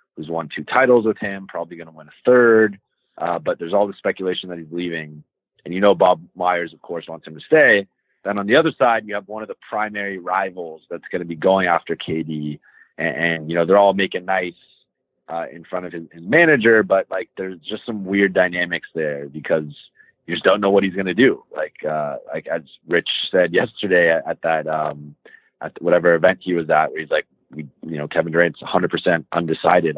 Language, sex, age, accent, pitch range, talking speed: English, male, 30-49, American, 85-105 Hz, 220 wpm